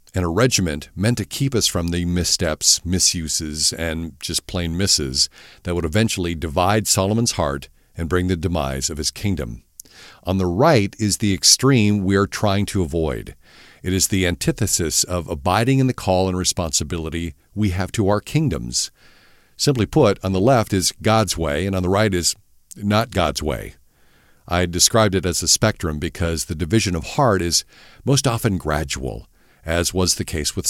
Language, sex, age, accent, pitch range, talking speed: English, male, 50-69, American, 80-110 Hz, 180 wpm